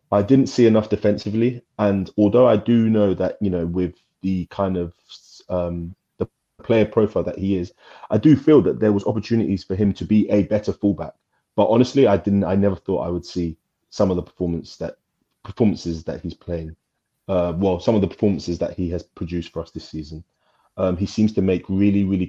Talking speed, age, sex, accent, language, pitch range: 210 wpm, 20-39, male, British, English, 90-105 Hz